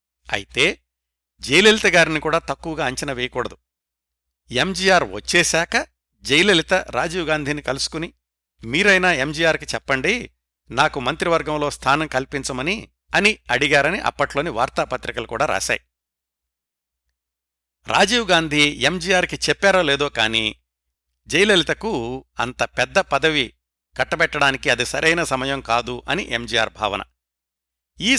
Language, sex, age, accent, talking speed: Telugu, male, 60-79, native, 95 wpm